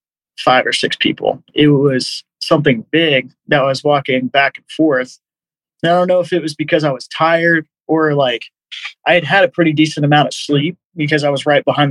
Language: English